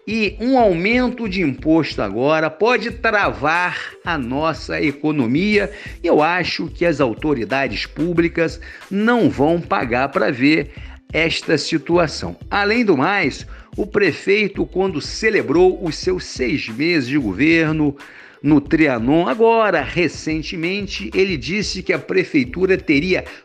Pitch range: 165-225 Hz